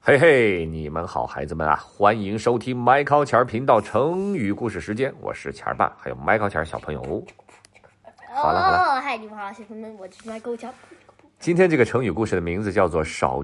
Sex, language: male, Chinese